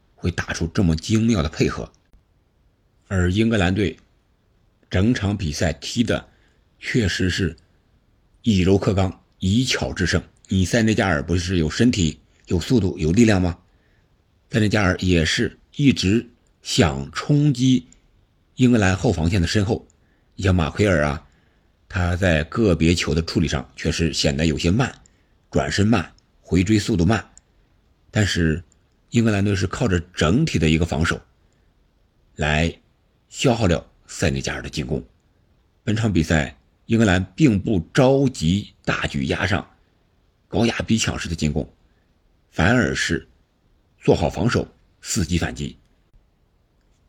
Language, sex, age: Chinese, male, 50-69